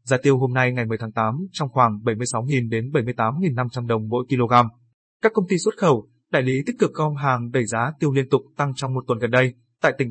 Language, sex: Vietnamese, male